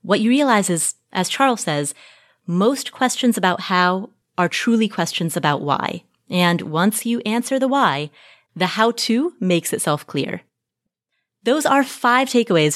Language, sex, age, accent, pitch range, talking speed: English, female, 30-49, American, 180-255 Hz, 145 wpm